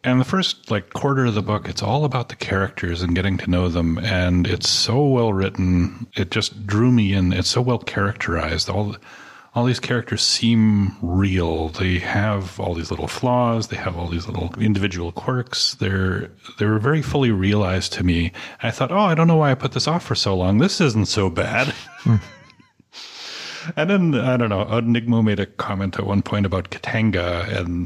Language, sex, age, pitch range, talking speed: English, male, 40-59, 90-120 Hz, 200 wpm